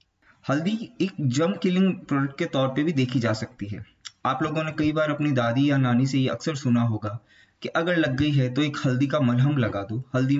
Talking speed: 230 wpm